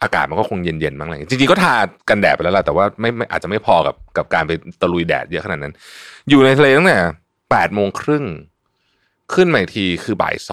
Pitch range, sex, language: 85-135 Hz, male, Thai